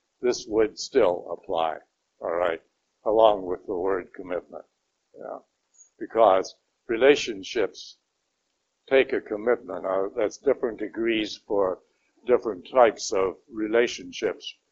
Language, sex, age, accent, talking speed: English, male, 60-79, American, 100 wpm